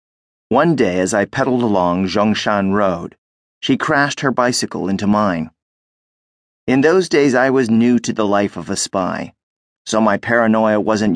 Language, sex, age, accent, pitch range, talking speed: English, male, 40-59, American, 105-130 Hz, 160 wpm